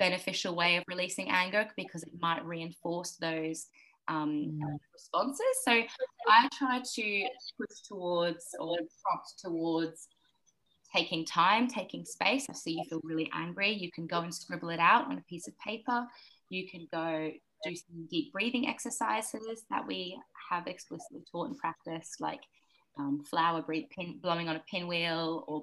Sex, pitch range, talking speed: female, 160-210 Hz, 150 wpm